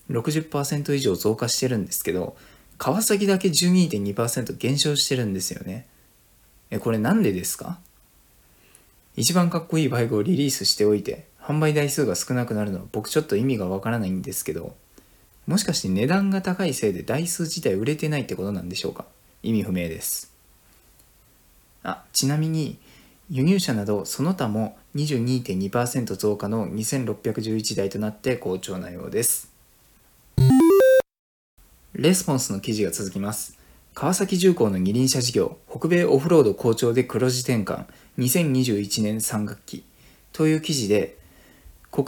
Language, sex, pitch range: Japanese, male, 105-150 Hz